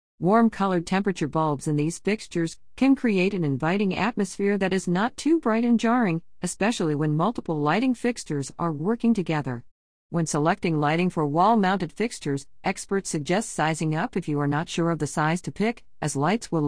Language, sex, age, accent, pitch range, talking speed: English, female, 50-69, American, 145-195 Hz, 185 wpm